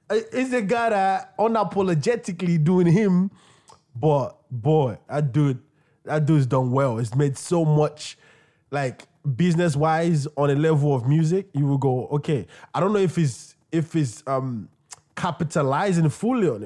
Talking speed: 150 wpm